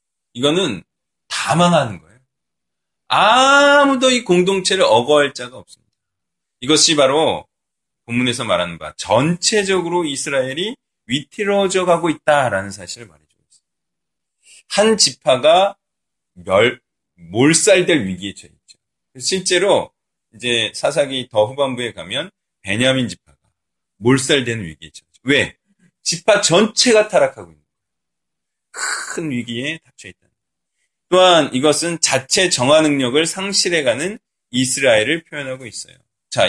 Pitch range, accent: 120-175 Hz, native